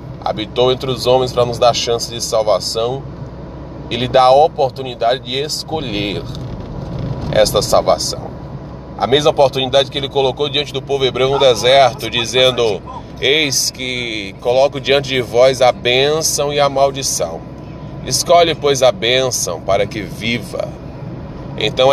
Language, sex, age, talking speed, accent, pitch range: Portuguese, male, 20-39, 135 wpm, Brazilian, 100-140 Hz